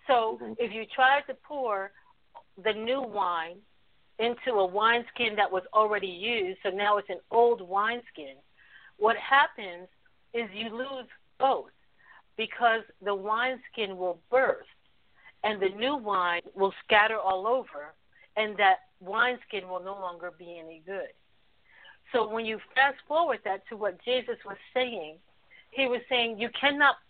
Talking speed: 145 wpm